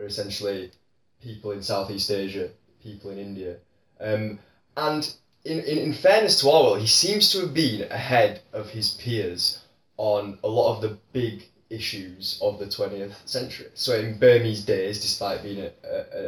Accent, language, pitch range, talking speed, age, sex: British, English, 100-120 Hz, 160 wpm, 20-39, male